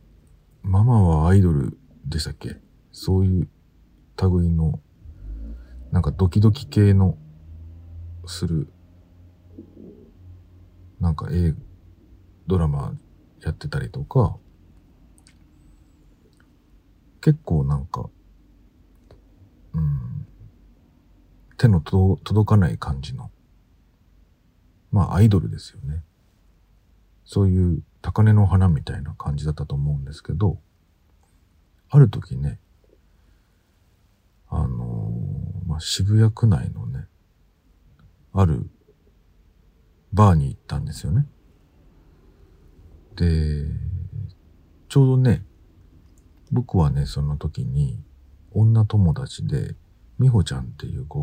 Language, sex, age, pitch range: Japanese, male, 40-59, 80-95 Hz